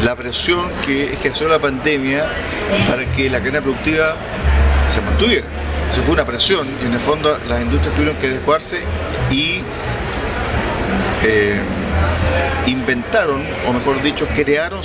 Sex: male